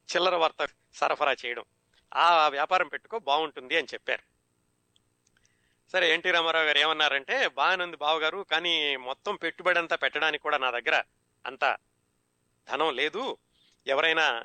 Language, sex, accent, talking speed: Telugu, male, native, 120 wpm